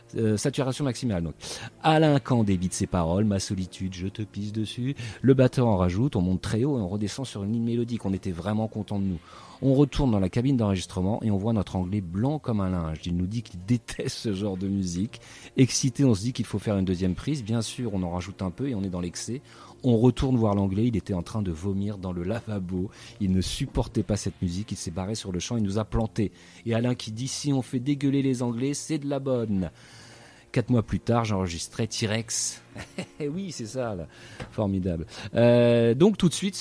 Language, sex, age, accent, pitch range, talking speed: French, male, 30-49, French, 95-130 Hz, 235 wpm